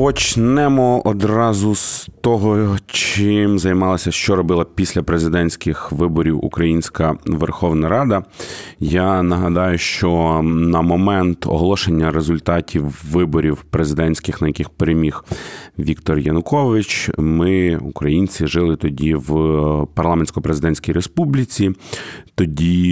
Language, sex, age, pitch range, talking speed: Ukrainian, male, 30-49, 80-100 Hz, 95 wpm